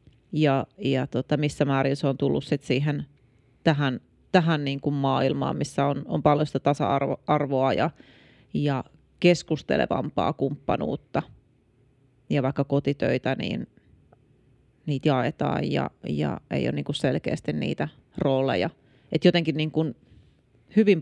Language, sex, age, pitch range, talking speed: Finnish, female, 30-49, 130-150 Hz, 125 wpm